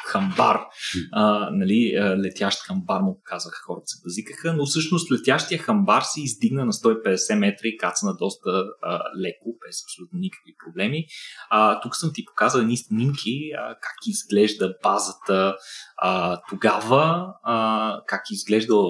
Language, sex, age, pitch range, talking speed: Bulgarian, male, 20-39, 100-160 Hz, 145 wpm